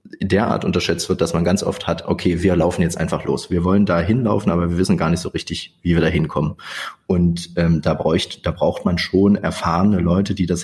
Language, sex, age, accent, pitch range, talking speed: German, male, 30-49, German, 85-100 Hz, 245 wpm